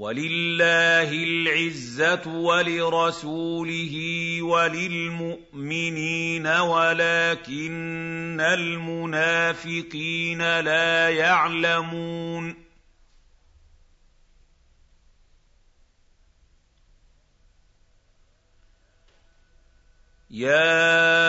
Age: 50-69